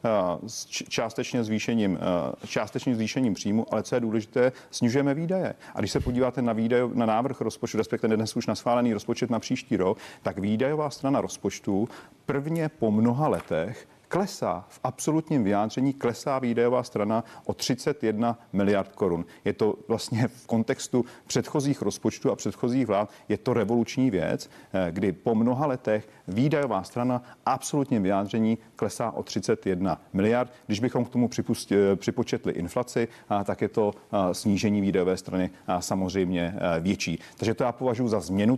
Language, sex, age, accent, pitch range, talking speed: Czech, male, 40-59, native, 105-125 Hz, 150 wpm